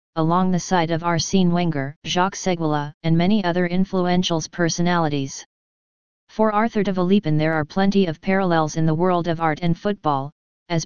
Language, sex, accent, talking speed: English, female, American, 165 wpm